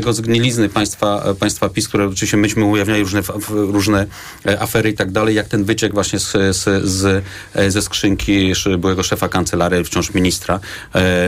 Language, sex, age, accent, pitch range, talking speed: Polish, male, 30-49, native, 95-105 Hz, 155 wpm